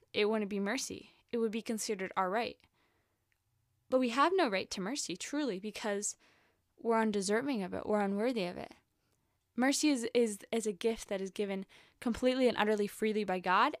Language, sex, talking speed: English, female, 185 wpm